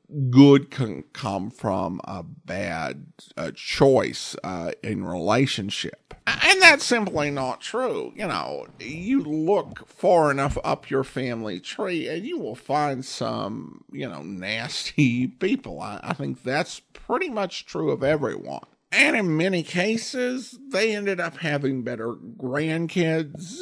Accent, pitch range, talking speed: American, 125-180 Hz, 135 wpm